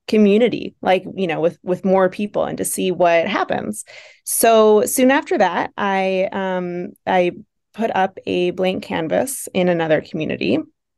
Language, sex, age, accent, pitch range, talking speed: English, female, 20-39, American, 180-215 Hz, 155 wpm